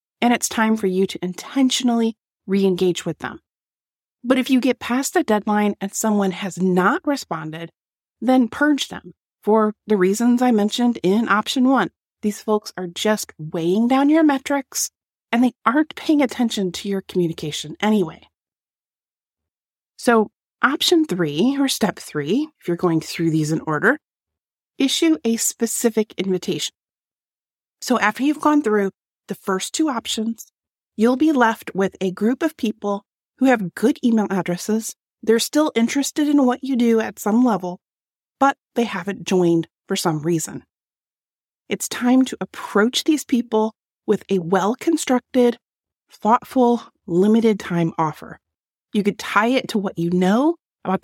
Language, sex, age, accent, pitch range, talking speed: English, female, 30-49, American, 185-255 Hz, 150 wpm